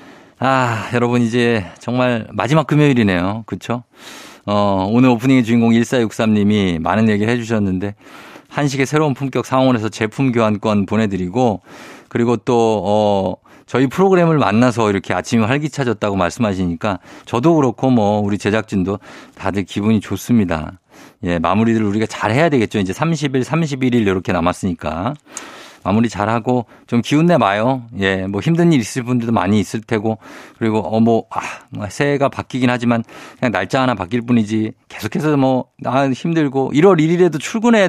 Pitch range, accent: 105-135 Hz, native